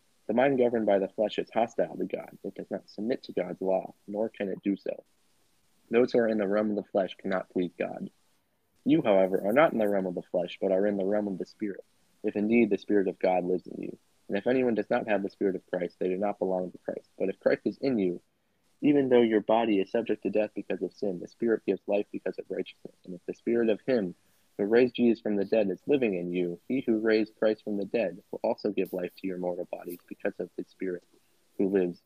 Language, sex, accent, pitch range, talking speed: English, male, American, 95-110 Hz, 260 wpm